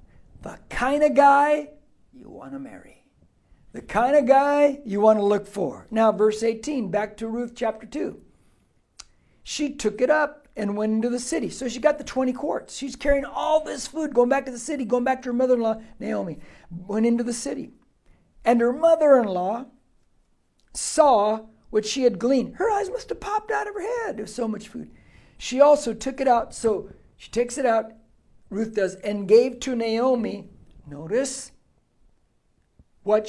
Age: 60-79